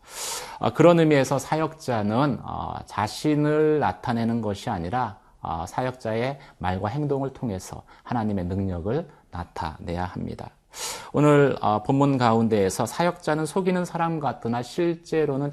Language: Korean